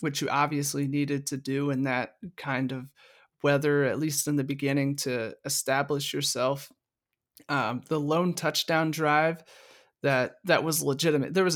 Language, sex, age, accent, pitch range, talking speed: English, male, 30-49, American, 140-160 Hz, 155 wpm